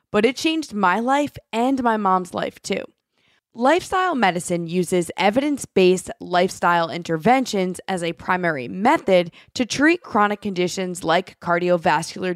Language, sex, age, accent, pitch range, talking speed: English, female, 20-39, American, 175-240 Hz, 125 wpm